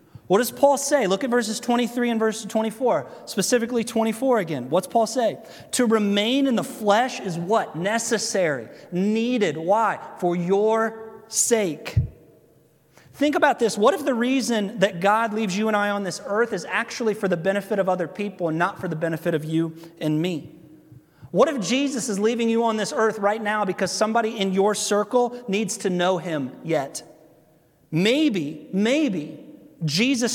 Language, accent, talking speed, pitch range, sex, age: English, American, 170 wpm, 155-220 Hz, male, 30-49